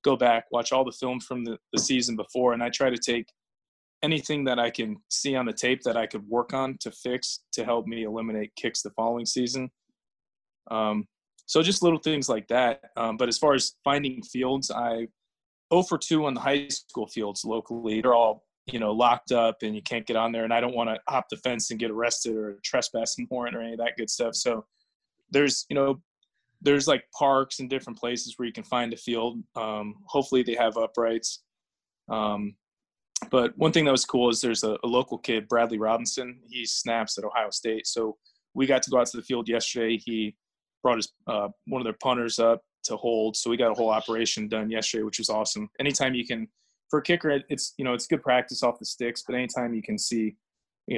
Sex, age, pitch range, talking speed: male, 20-39, 110-130 Hz, 220 wpm